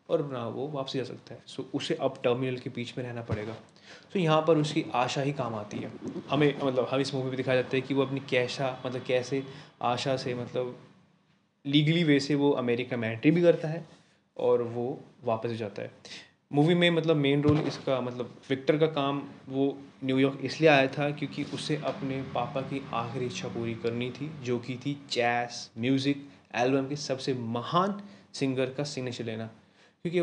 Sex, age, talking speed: male, 20-39, 195 wpm